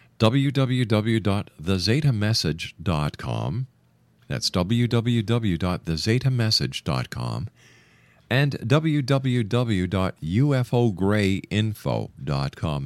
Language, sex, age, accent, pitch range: English, male, 50-69, American, 85-115 Hz